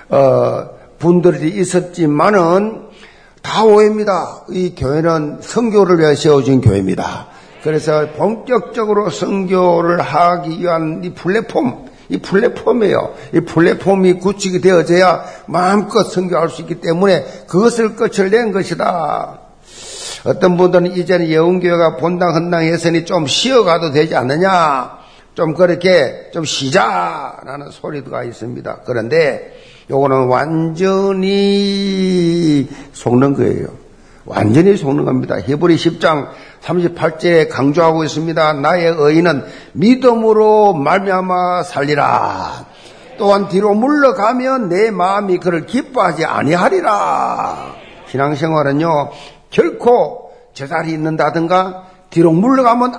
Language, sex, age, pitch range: Korean, male, 50-69, 160-200 Hz